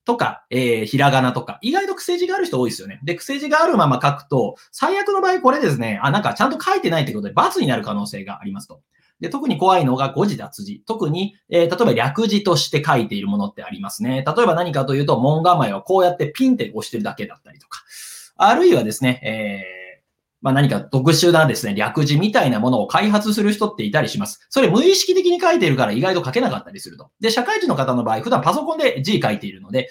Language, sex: Japanese, male